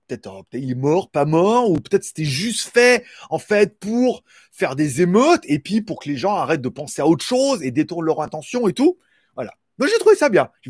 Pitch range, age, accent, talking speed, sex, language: 145-210 Hz, 30-49, French, 245 wpm, male, French